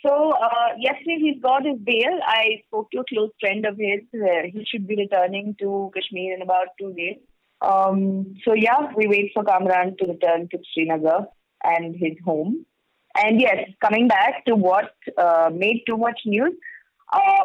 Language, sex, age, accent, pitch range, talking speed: English, female, 20-39, Indian, 175-230 Hz, 180 wpm